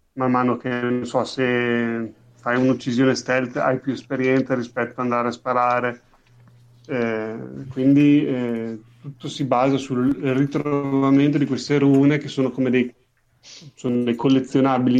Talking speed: 140 wpm